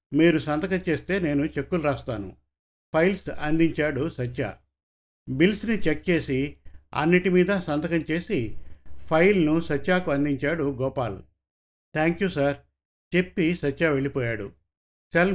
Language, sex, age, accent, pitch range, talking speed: Telugu, male, 50-69, native, 110-175 Hz, 105 wpm